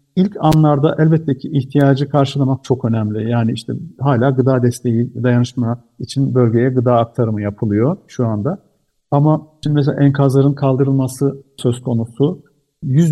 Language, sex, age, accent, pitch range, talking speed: Turkish, male, 50-69, native, 120-140 Hz, 135 wpm